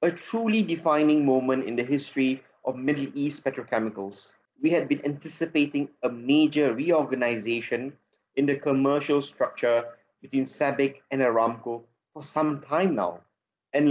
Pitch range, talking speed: 130-155 Hz, 135 wpm